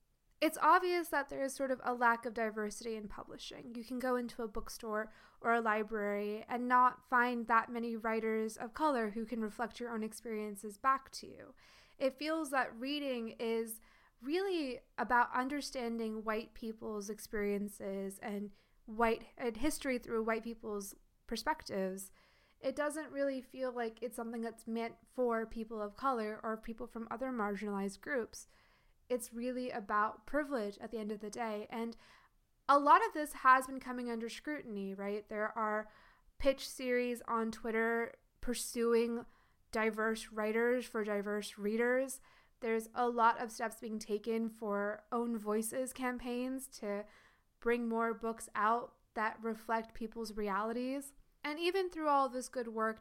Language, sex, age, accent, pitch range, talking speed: English, female, 20-39, American, 215-250 Hz, 155 wpm